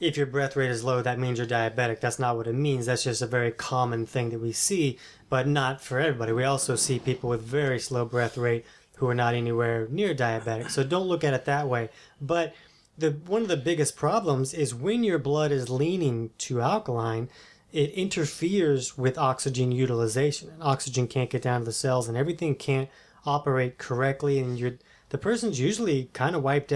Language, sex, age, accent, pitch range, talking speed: English, male, 20-39, American, 125-150 Hz, 195 wpm